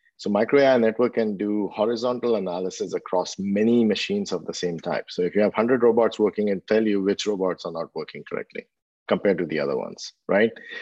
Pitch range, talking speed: 95-115 Hz, 205 wpm